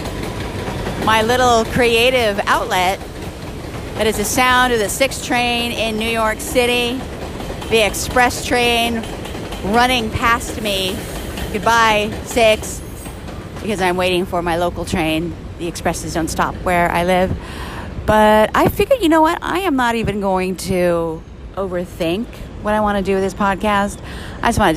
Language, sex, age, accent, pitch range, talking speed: English, female, 40-59, American, 165-215 Hz, 155 wpm